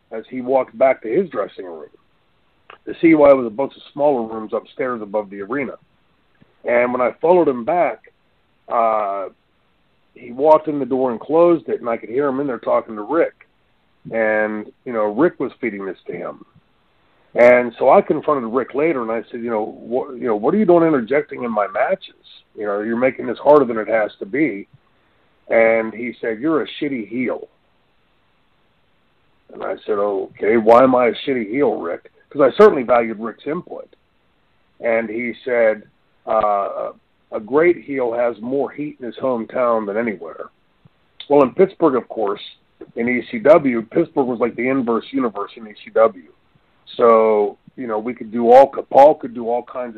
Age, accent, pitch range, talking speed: 40-59, American, 115-150 Hz, 185 wpm